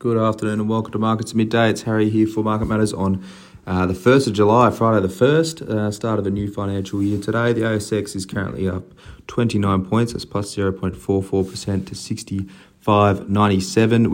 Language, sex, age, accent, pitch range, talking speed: English, male, 30-49, Australian, 90-110 Hz, 180 wpm